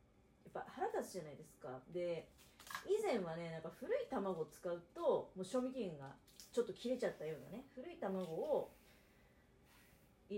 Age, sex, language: 40-59, female, Japanese